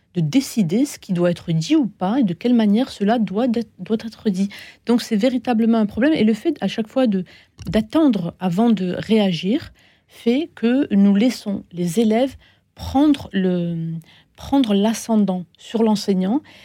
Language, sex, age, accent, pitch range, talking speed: French, female, 40-59, French, 180-230 Hz, 165 wpm